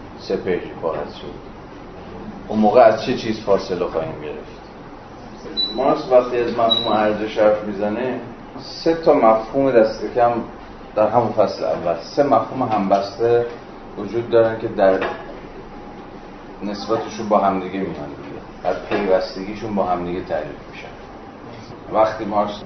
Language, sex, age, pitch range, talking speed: Persian, male, 40-59, 95-115 Hz, 130 wpm